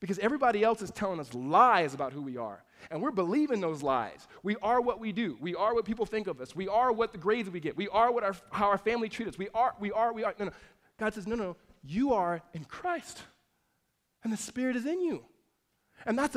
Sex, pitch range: male, 175-235 Hz